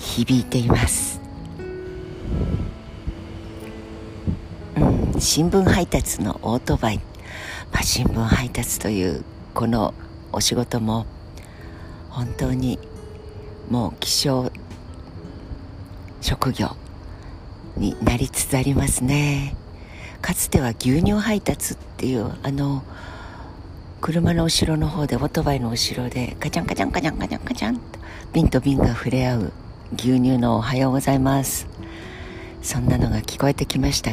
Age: 60-79